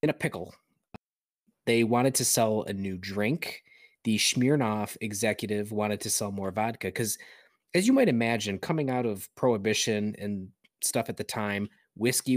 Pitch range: 95-115 Hz